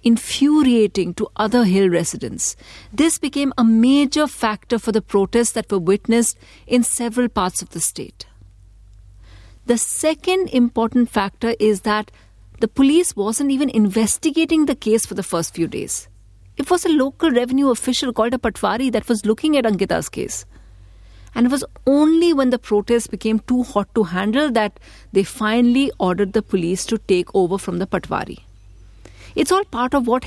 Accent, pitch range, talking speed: Indian, 185-245 Hz, 165 wpm